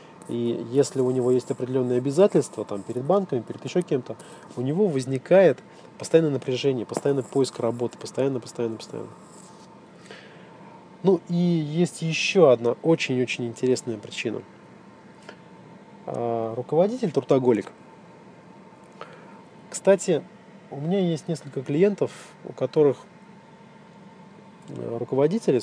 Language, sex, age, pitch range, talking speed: Russian, male, 20-39, 125-180 Hz, 100 wpm